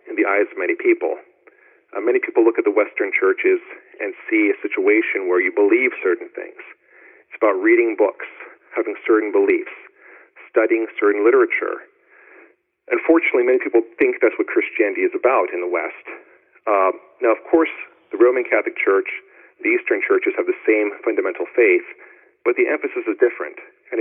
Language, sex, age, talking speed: English, male, 40-59, 165 wpm